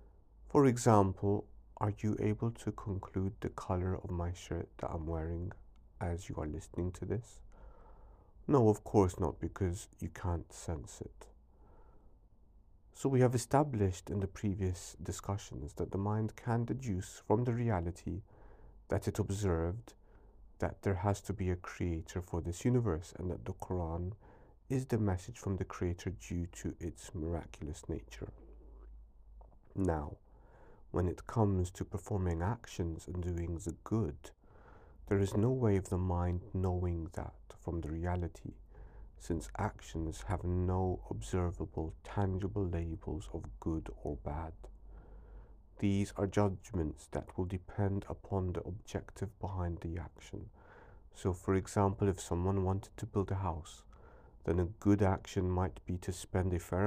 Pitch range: 85-105 Hz